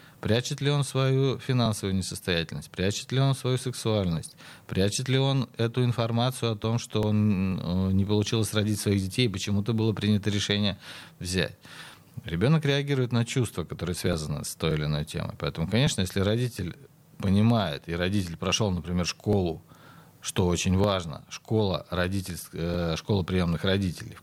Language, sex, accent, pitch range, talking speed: Russian, male, native, 90-125 Hz, 145 wpm